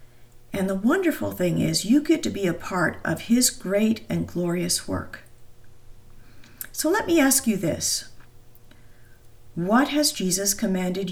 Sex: female